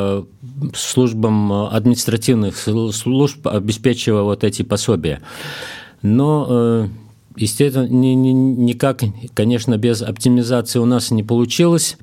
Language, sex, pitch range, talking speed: Russian, male, 110-130 Hz, 85 wpm